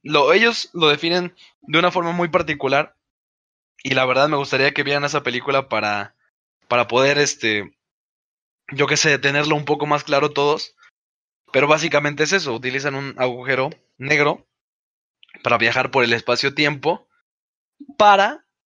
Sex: male